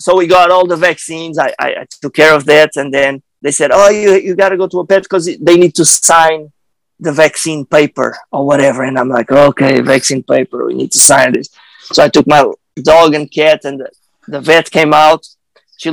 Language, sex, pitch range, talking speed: English, male, 155-215 Hz, 230 wpm